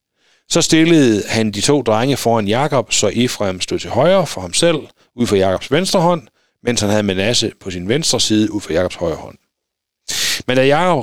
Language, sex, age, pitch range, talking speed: Danish, male, 60-79, 105-140 Hz, 200 wpm